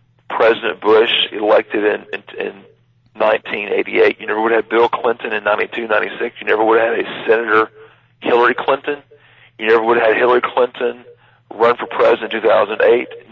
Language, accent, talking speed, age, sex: English, American, 175 wpm, 40-59, male